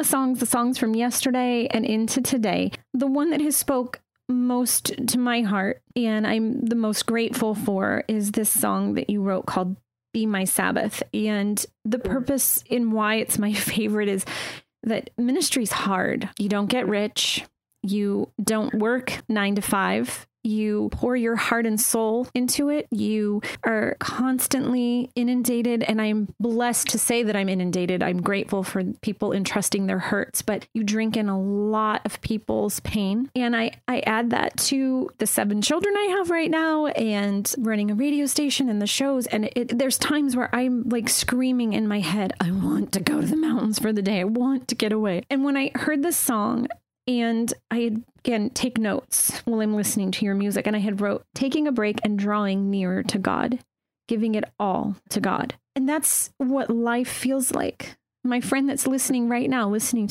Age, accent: 30-49, American